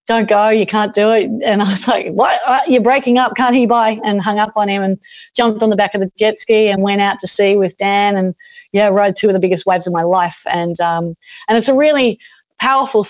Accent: Australian